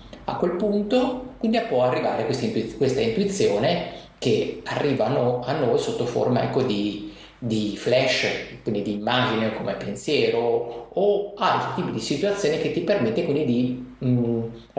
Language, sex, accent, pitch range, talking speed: Italian, male, native, 120-180 Hz, 145 wpm